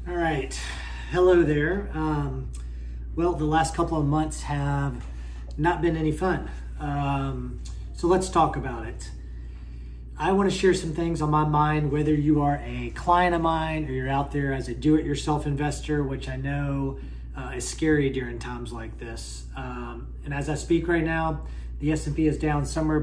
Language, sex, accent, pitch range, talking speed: English, male, American, 125-155 Hz, 180 wpm